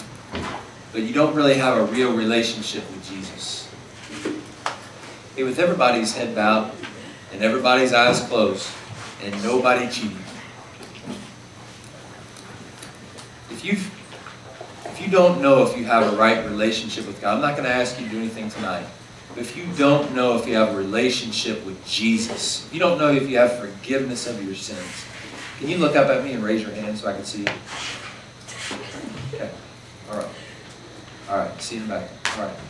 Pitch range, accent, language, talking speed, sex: 100-125 Hz, American, English, 155 wpm, male